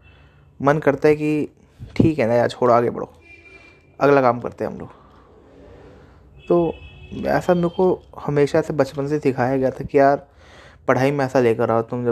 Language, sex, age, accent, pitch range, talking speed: Hindi, male, 20-39, native, 115-140 Hz, 185 wpm